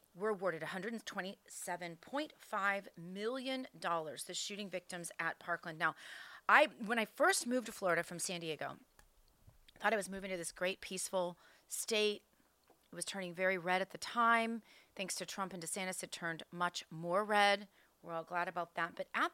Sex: female